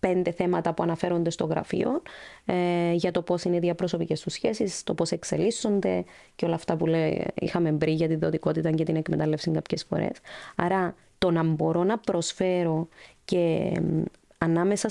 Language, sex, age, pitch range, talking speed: Greek, female, 20-39, 170-205 Hz, 170 wpm